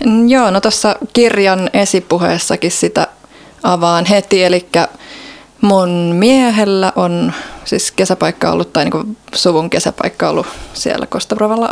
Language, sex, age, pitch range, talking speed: Finnish, female, 20-39, 175-215 Hz, 115 wpm